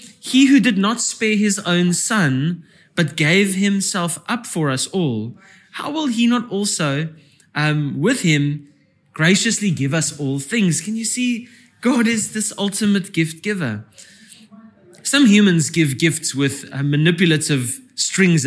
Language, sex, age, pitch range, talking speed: English, male, 20-39, 145-200 Hz, 145 wpm